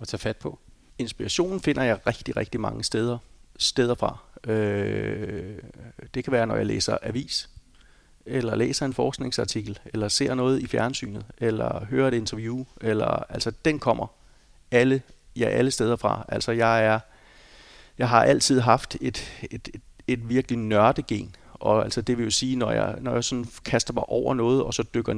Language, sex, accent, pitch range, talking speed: Danish, male, native, 110-130 Hz, 175 wpm